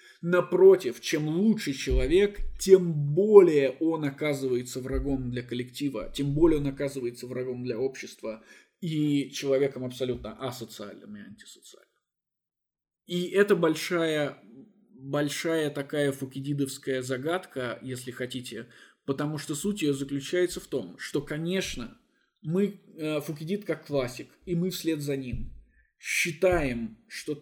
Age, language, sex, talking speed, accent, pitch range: 20-39, Russian, male, 115 wpm, native, 135-180 Hz